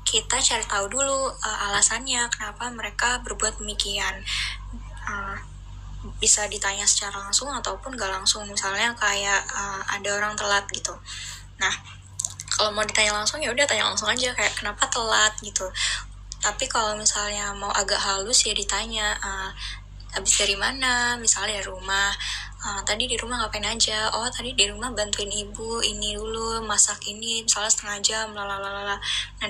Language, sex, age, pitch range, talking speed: Indonesian, female, 10-29, 195-220 Hz, 150 wpm